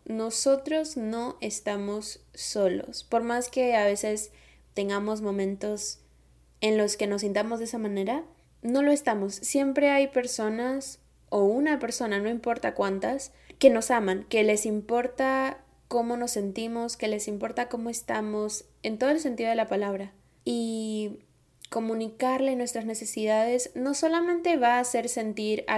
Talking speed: 145 wpm